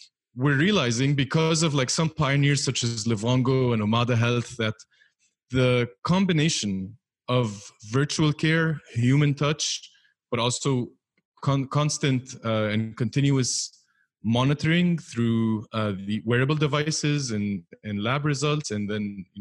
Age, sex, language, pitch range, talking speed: 20-39, male, English, 115-150 Hz, 125 wpm